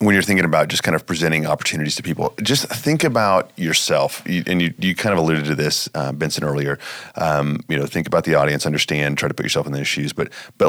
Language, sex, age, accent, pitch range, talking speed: English, male, 30-49, American, 80-95 Hz, 245 wpm